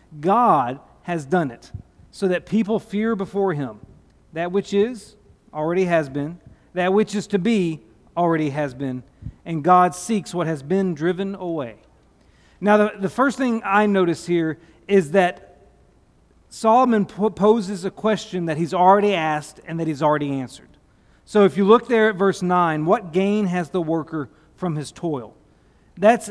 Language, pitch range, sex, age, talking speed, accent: English, 170-215 Hz, male, 40-59, 165 wpm, American